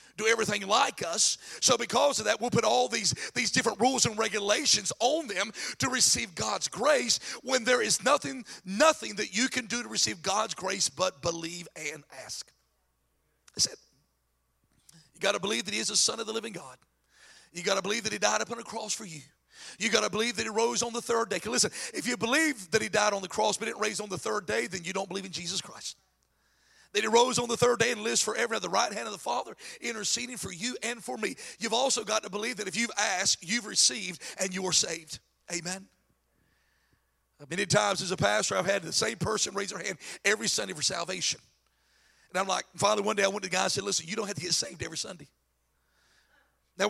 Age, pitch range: 40-59, 180-235 Hz